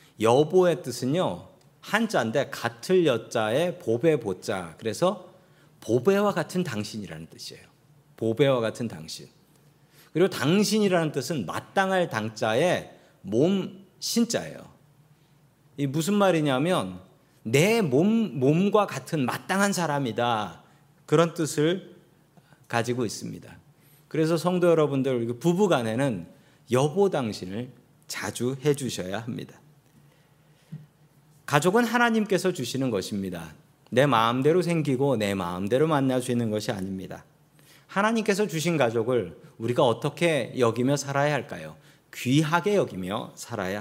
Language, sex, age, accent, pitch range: Korean, male, 40-59, native, 120-170 Hz